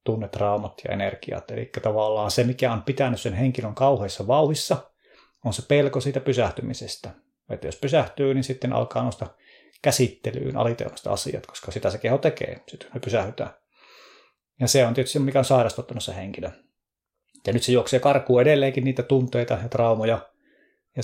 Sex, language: male, Finnish